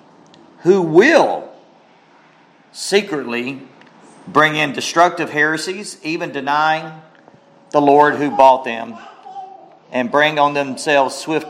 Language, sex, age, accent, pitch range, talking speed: English, male, 40-59, American, 115-155 Hz, 100 wpm